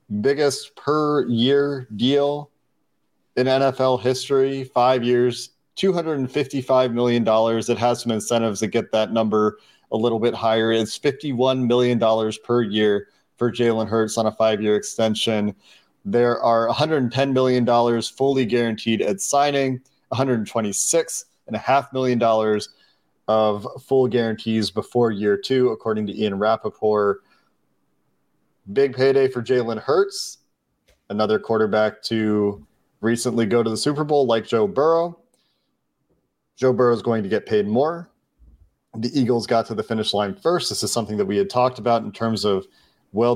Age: 30-49